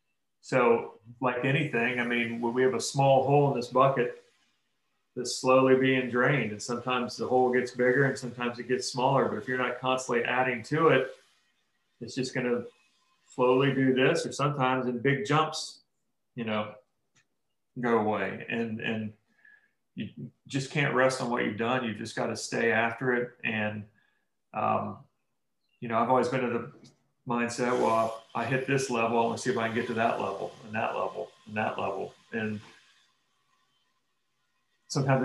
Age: 40-59